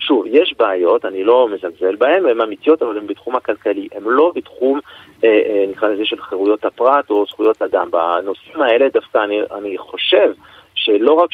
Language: Hebrew